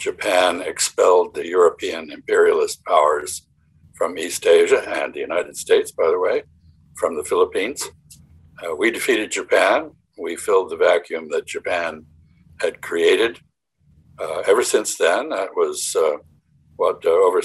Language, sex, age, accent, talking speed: English, male, 60-79, American, 140 wpm